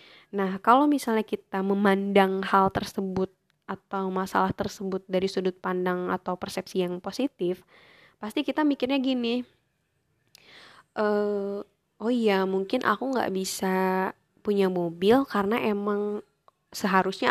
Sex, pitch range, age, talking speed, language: female, 190-220 Hz, 20-39, 115 wpm, Indonesian